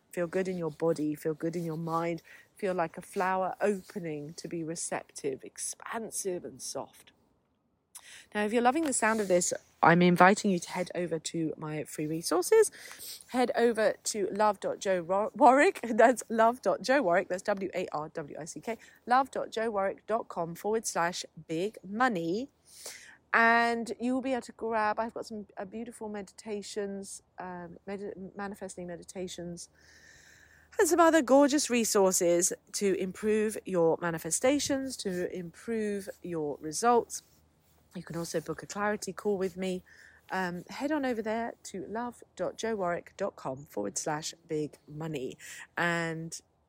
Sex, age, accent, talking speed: female, 40-59, British, 145 wpm